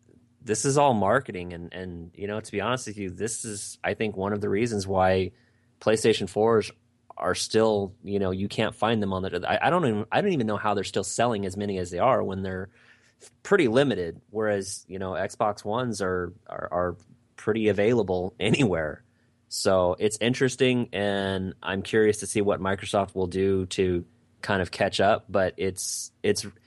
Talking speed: 195 wpm